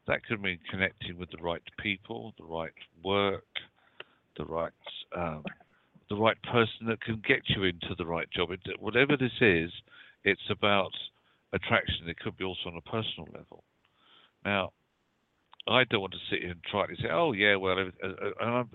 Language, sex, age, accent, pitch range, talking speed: English, male, 50-69, British, 95-120 Hz, 175 wpm